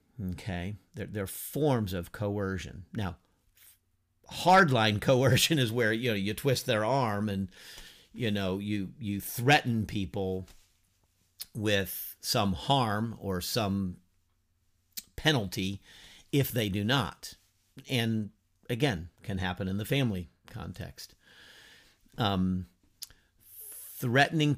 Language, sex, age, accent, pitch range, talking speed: English, male, 50-69, American, 95-120 Hz, 105 wpm